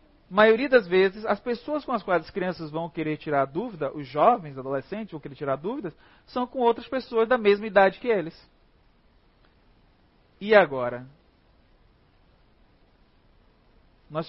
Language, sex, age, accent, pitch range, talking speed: Portuguese, male, 40-59, Brazilian, 175-235 Hz, 145 wpm